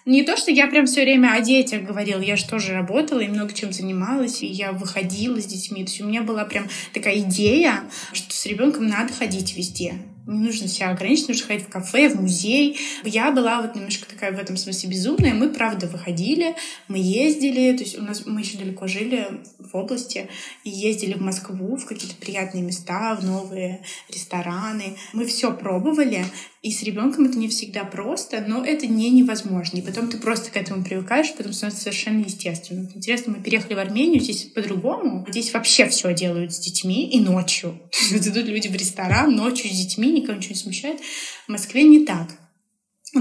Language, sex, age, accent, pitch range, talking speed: Russian, female, 20-39, native, 190-245 Hz, 190 wpm